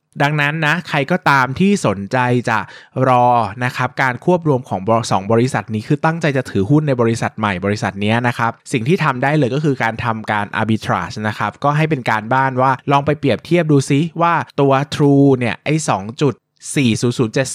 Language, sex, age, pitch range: Thai, male, 20-39, 110-145 Hz